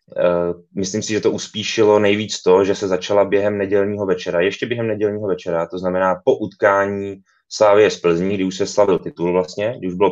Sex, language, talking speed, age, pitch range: male, Czech, 200 wpm, 20-39, 95-110 Hz